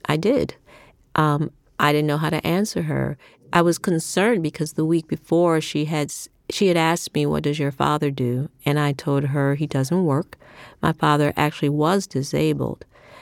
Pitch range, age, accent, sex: 145-190 Hz, 40-59, American, female